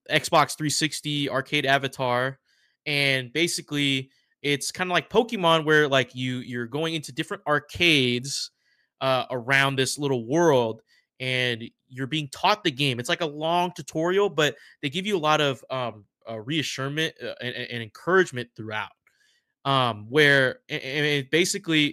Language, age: English, 20-39